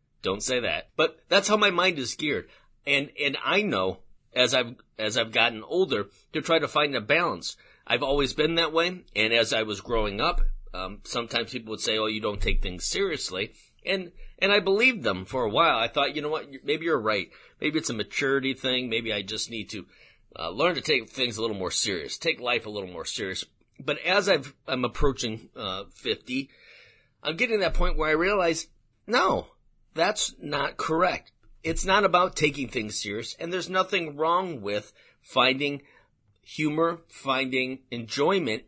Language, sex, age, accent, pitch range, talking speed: English, male, 40-59, American, 110-160 Hz, 190 wpm